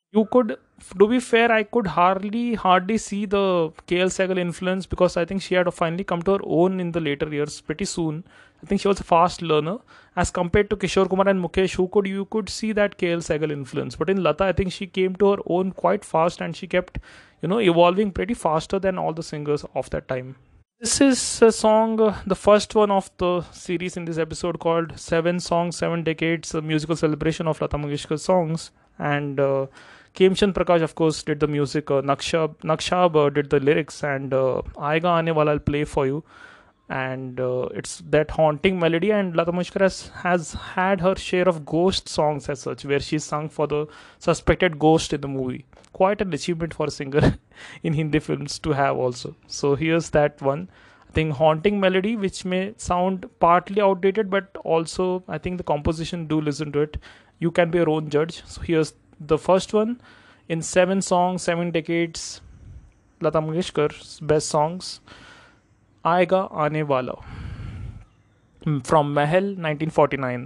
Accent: Indian